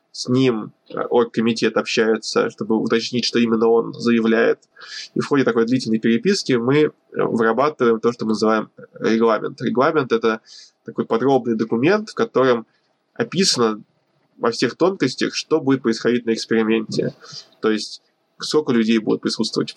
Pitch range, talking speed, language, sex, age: 115-130 Hz, 140 wpm, Russian, male, 20-39